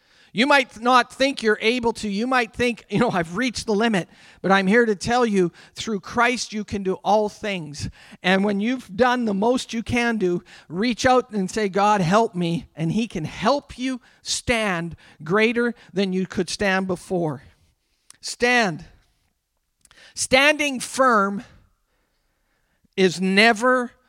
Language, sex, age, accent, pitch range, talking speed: English, male, 50-69, American, 180-225 Hz, 155 wpm